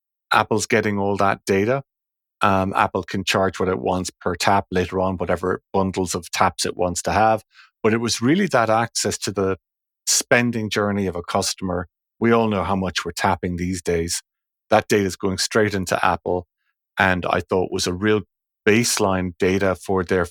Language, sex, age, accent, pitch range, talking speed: English, male, 30-49, Irish, 95-110 Hz, 185 wpm